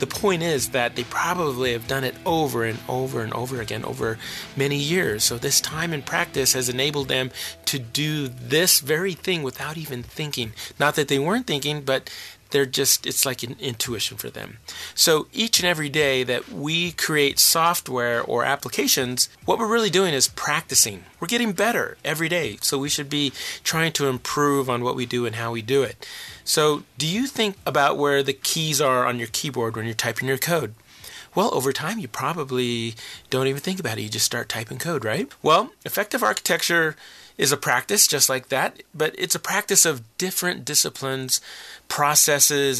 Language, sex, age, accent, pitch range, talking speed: English, male, 30-49, American, 125-165 Hz, 190 wpm